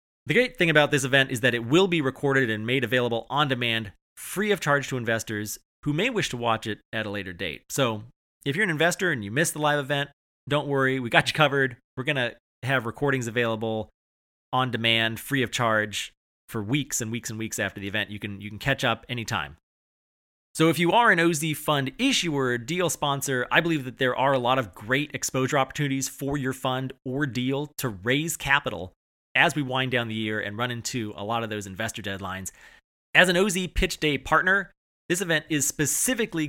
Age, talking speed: 30-49, 215 wpm